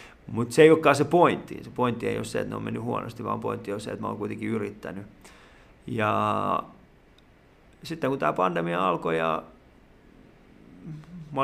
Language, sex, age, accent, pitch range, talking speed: Finnish, male, 30-49, native, 105-135 Hz, 175 wpm